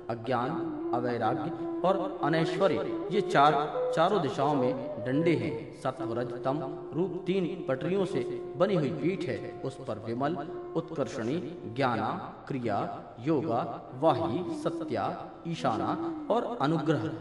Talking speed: 110 wpm